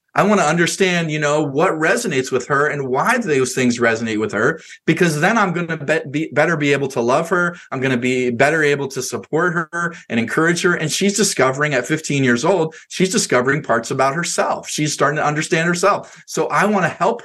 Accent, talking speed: American, 215 wpm